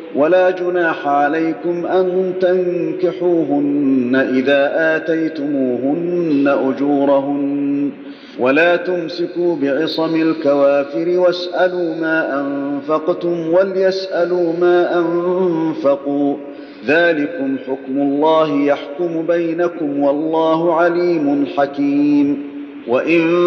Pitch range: 140-175 Hz